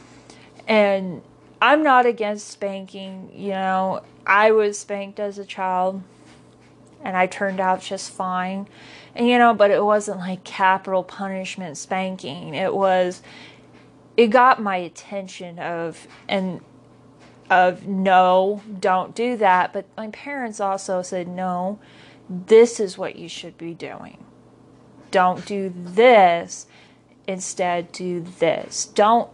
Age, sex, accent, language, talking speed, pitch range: 30-49, female, American, English, 125 wpm, 185-215 Hz